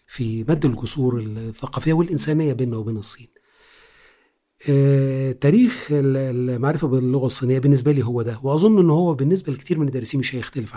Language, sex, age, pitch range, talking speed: Arabic, male, 40-59, 120-155 Hz, 140 wpm